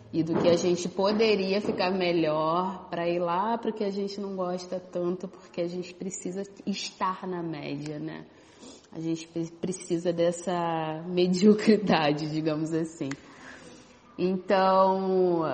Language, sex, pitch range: Portuguese, female, 165-185 Hz